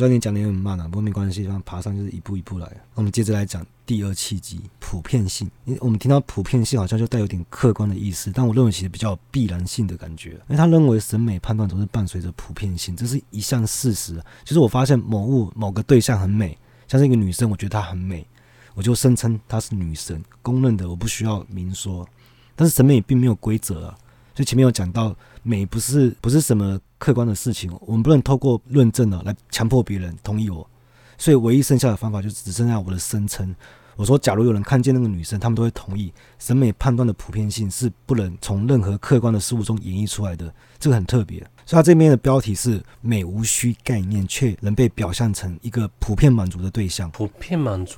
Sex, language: male, Chinese